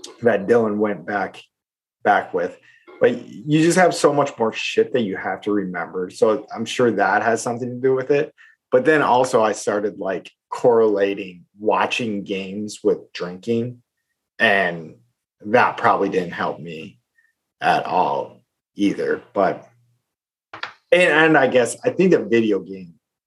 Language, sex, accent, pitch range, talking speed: English, male, American, 95-125 Hz, 150 wpm